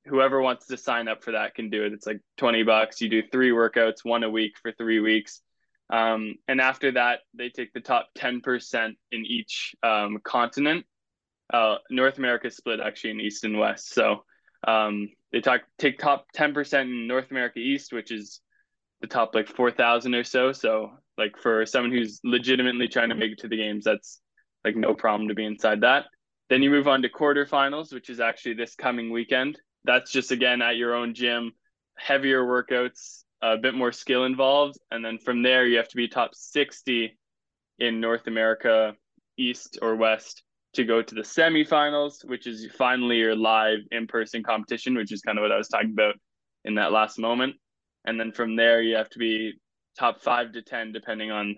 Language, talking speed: English, 195 wpm